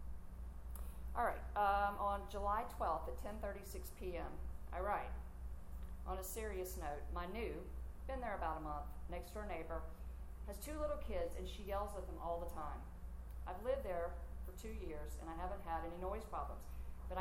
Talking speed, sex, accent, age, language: 180 wpm, female, American, 40-59, English